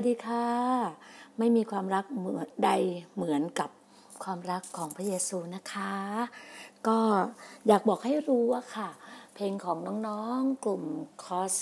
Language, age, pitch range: Thai, 60-79, 200-260 Hz